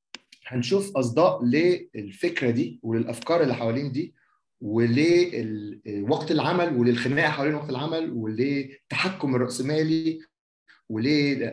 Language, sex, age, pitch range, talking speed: Arabic, male, 30-49, 120-160 Hz, 100 wpm